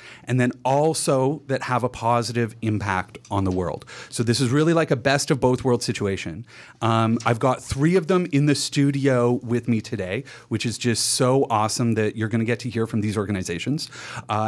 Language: English